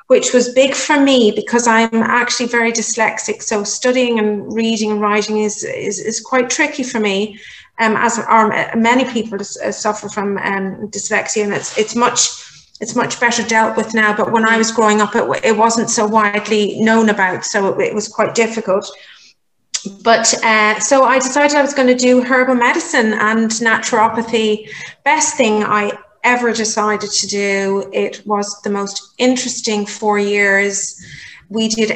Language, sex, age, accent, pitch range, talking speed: English, female, 30-49, British, 210-240 Hz, 175 wpm